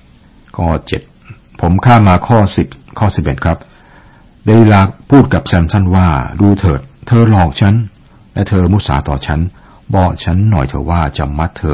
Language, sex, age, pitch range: Thai, male, 60-79, 70-90 Hz